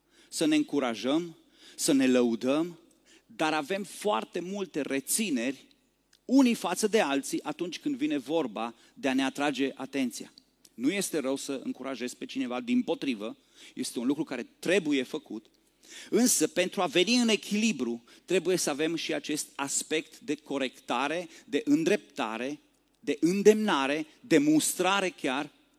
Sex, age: male, 30-49